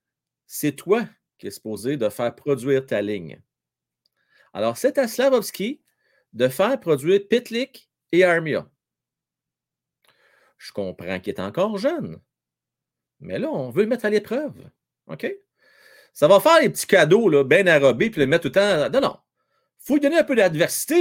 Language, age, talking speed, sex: French, 40-59, 165 wpm, male